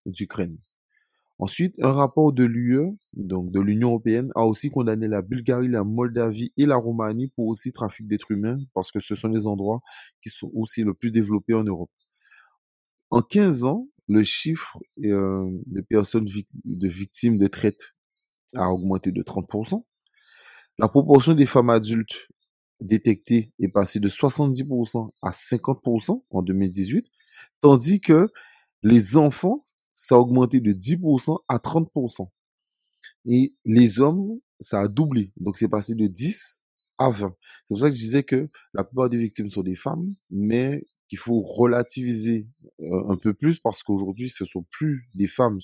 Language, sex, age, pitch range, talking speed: French, male, 30-49, 100-135 Hz, 160 wpm